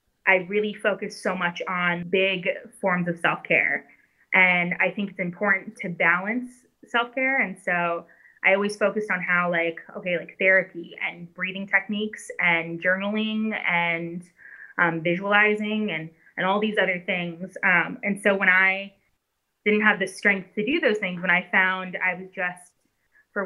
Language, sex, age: English, female, 20-39